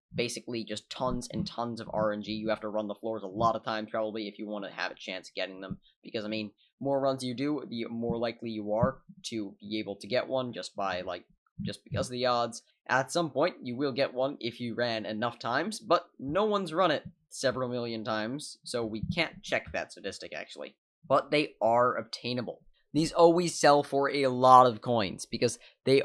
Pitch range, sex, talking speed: 110-140 Hz, male, 215 wpm